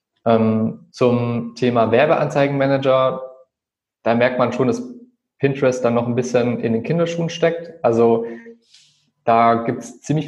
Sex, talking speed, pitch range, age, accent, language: male, 135 wpm, 115-130 Hz, 20-39, German, German